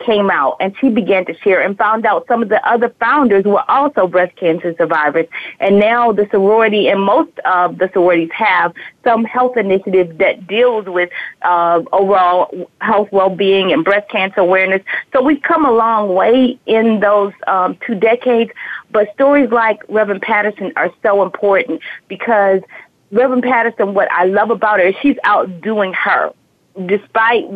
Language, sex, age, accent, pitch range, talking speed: English, female, 30-49, American, 185-225 Hz, 165 wpm